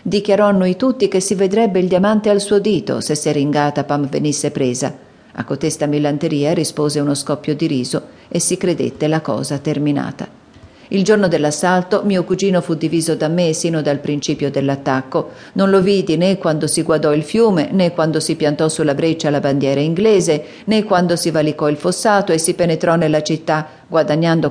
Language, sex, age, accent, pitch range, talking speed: Italian, female, 40-59, native, 150-180 Hz, 180 wpm